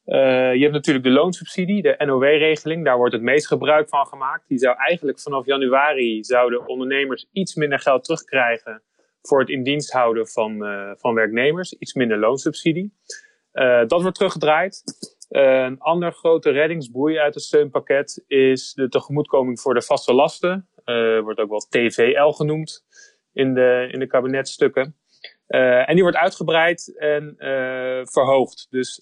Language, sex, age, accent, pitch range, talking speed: Dutch, male, 30-49, Dutch, 125-155 Hz, 155 wpm